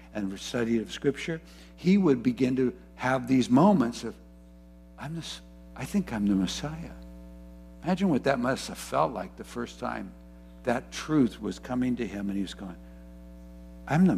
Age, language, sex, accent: 60-79, English, male, American